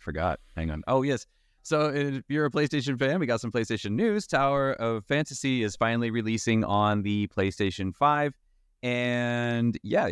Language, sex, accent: English, male, American